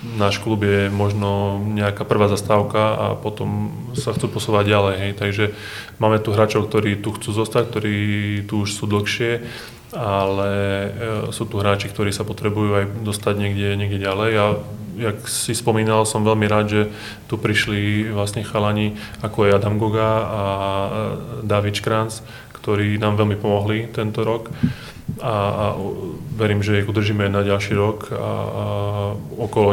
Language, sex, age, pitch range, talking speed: Czech, male, 20-39, 105-115 Hz, 150 wpm